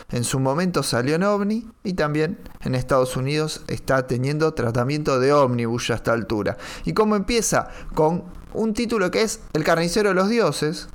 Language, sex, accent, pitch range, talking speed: Spanish, male, Argentinian, 125-180 Hz, 175 wpm